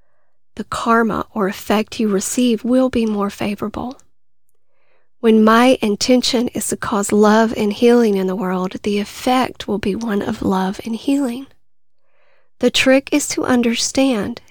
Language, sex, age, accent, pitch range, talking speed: English, female, 40-59, American, 205-255 Hz, 150 wpm